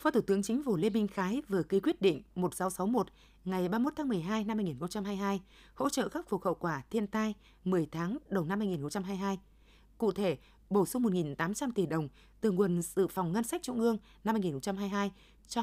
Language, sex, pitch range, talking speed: Vietnamese, female, 175-230 Hz, 190 wpm